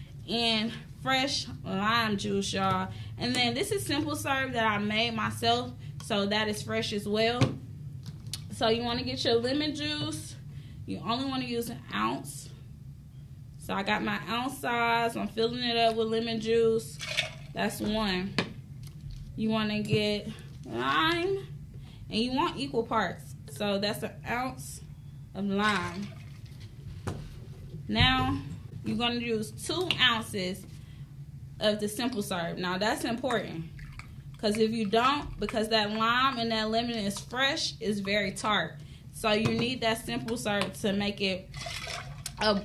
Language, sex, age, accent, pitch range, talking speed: English, female, 20-39, American, 140-230 Hz, 150 wpm